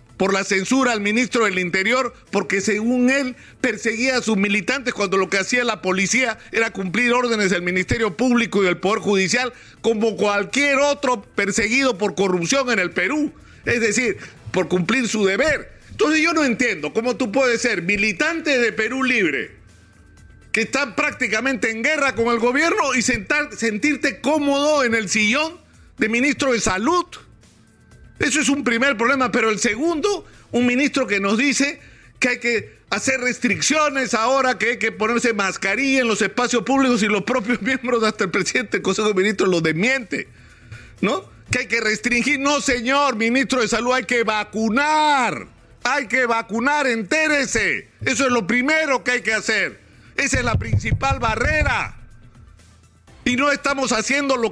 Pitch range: 210-270 Hz